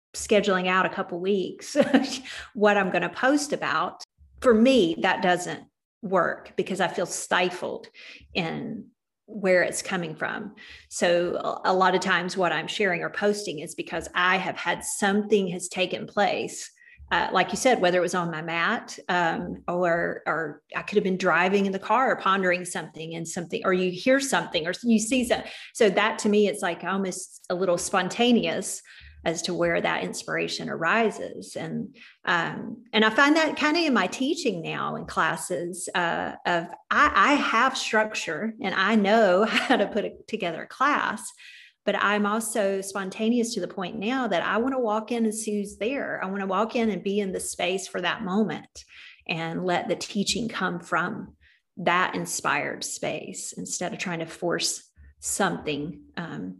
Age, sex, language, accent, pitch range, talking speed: 40-59, female, English, American, 180-225 Hz, 180 wpm